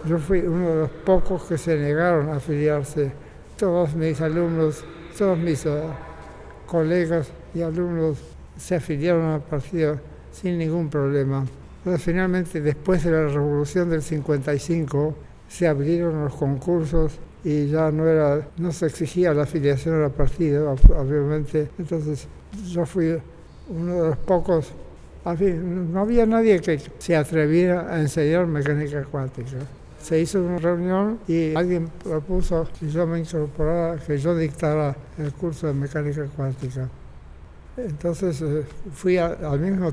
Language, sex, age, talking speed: Portuguese, male, 60-79, 140 wpm